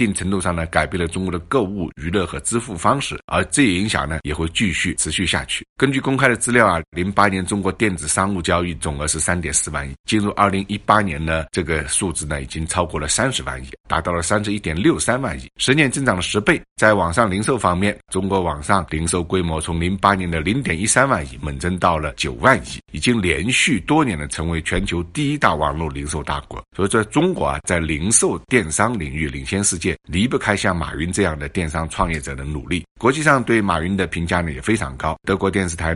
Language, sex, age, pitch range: Chinese, male, 60-79, 75-100 Hz